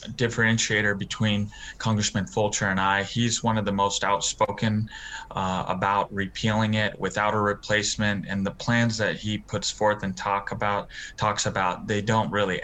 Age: 20-39